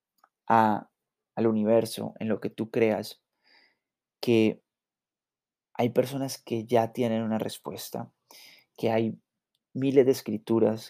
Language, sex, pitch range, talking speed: Spanish, male, 110-135 Hz, 115 wpm